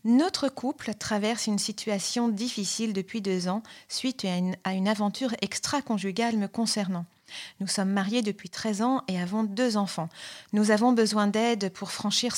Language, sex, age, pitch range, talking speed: French, female, 40-59, 200-240 Hz, 160 wpm